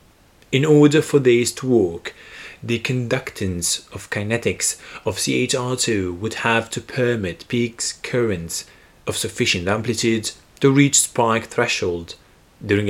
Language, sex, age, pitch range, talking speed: English, male, 30-49, 105-130 Hz, 120 wpm